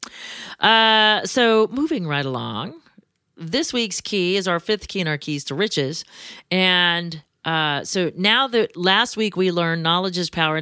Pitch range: 155-195 Hz